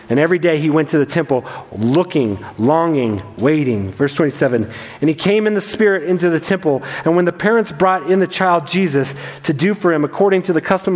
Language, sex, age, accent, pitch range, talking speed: English, male, 40-59, American, 145-195 Hz, 215 wpm